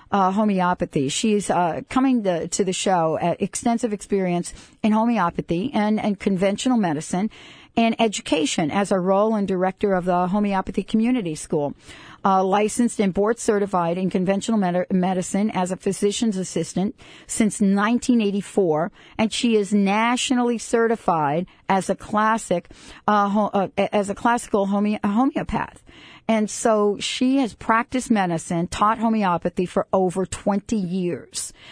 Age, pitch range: 50-69, 185-225 Hz